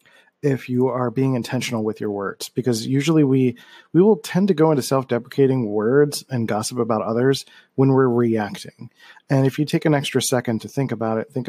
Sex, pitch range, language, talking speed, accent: male, 115-135 Hz, English, 200 wpm, American